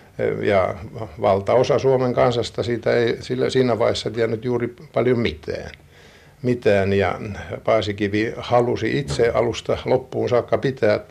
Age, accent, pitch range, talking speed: 60-79, native, 100-120 Hz, 120 wpm